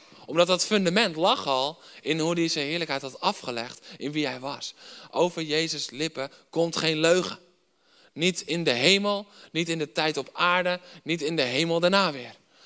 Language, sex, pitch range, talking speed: Dutch, male, 130-175 Hz, 180 wpm